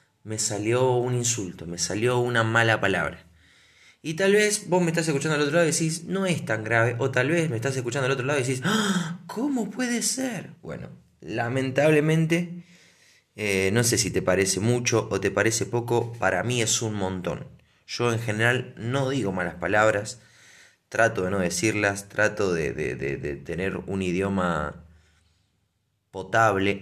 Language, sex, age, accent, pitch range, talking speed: Spanish, male, 20-39, Argentinian, 100-130 Hz, 170 wpm